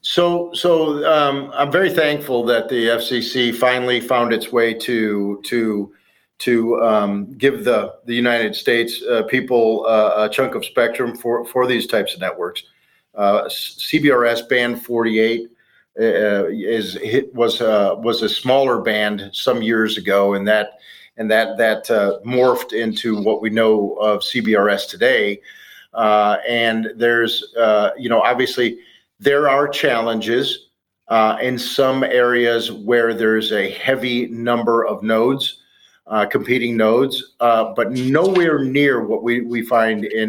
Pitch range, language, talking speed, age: 110-125 Hz, English, 145 wpm, 40-59